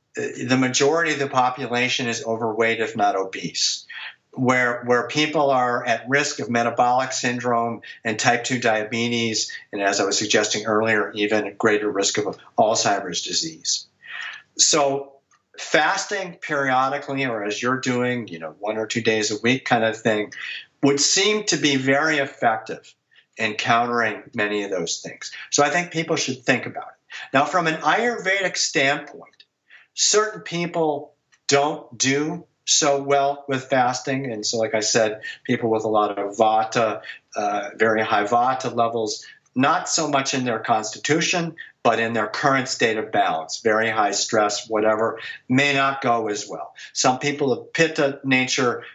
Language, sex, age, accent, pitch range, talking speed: English, male, 50-69, American, 115-145 Hz, 160 wpm